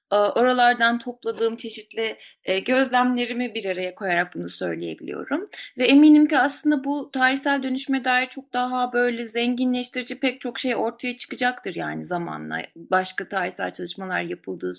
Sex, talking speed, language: female, 130 wpm, Turkish